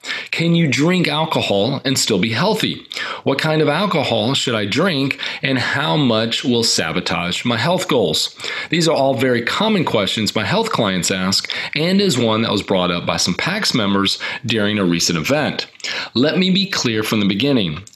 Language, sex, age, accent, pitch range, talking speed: English, male, 40-59, American, 110-155 Hz, 185 wpm